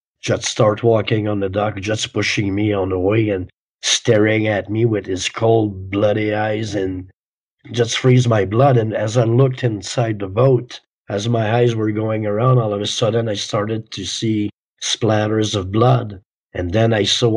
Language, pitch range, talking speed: English, 105-120 Hz, 185 wpm